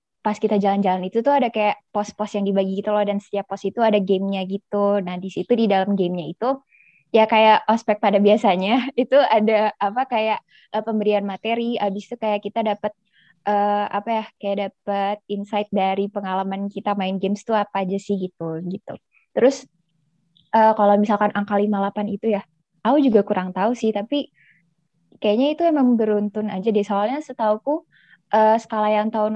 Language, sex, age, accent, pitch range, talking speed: Indonesian, female, 20-39, native, 200-235 Hz, 175 wpm